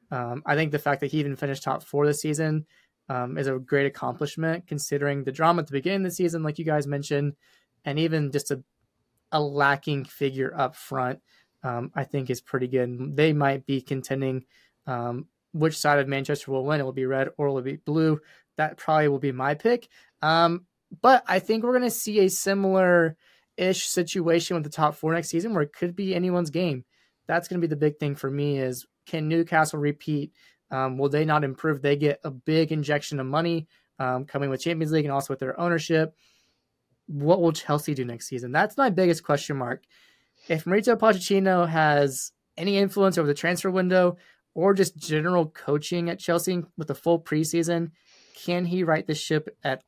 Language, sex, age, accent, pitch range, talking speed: English, male, 20-39, American, 140-170 Hz, 200 wpm